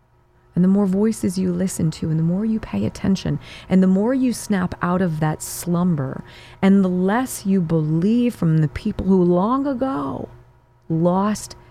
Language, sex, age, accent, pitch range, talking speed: English, female, 40-59, American, 120-185 Hz, 175 wpm